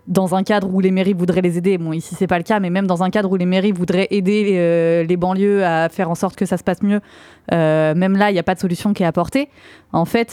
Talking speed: 300 wpm